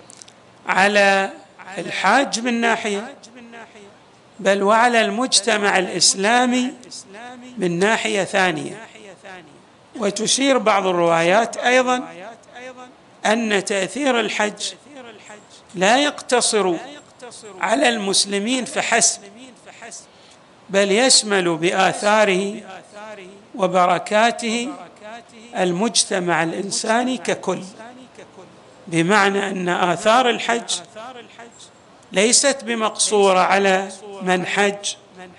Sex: male